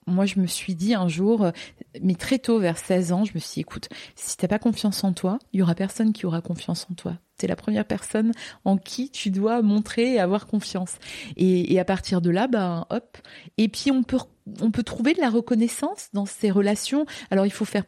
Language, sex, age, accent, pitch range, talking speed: French, female, 30-49, French, 185-240 Hz, 240 wpm